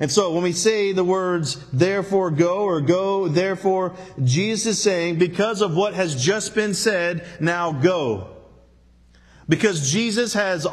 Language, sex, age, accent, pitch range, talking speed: English, male, 40-59, American, 130-195 Hz, 150 wpm